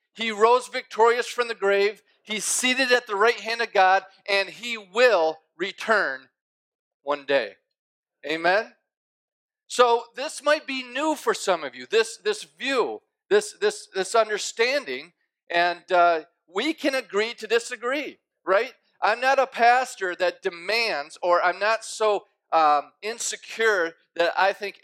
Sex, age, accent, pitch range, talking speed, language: male, 40-59, American, 185-245 Hz, 145 wpm, English